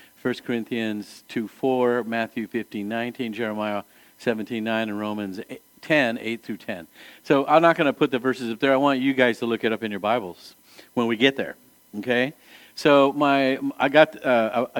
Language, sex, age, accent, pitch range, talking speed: English, male, 50-69, American, 110-135 Hz, 200 wpm